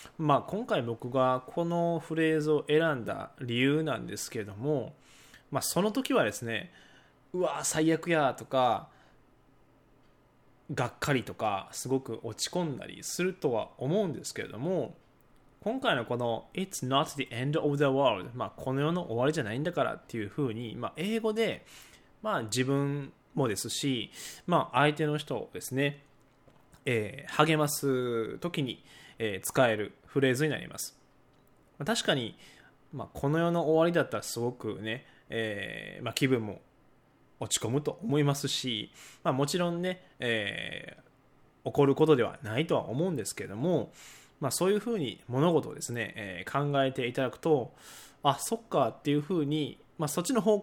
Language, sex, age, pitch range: Japanese, male, 20-39, 125-165 Hz